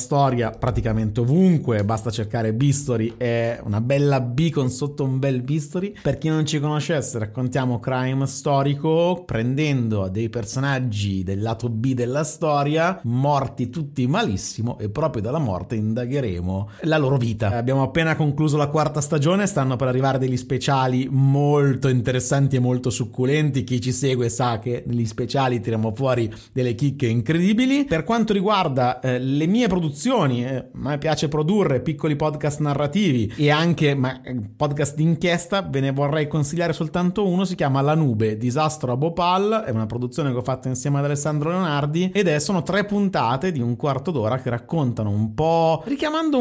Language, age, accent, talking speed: Italian, 30-49, native, 165 wpm